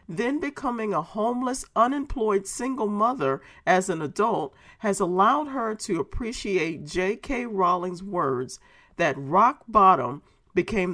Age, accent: 40-59, American